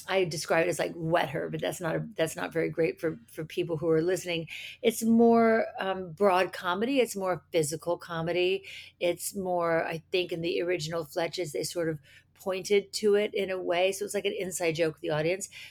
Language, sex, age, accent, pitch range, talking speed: English, female, 50-69, American, 160-220 Hz, 210 wpm